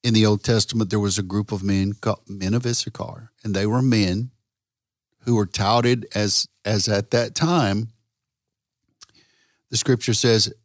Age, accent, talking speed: 50-69, American, 165 wpm